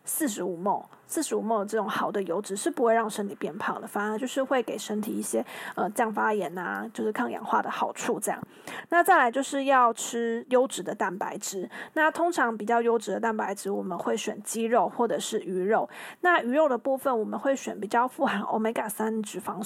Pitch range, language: 210-255 Hz, Chinese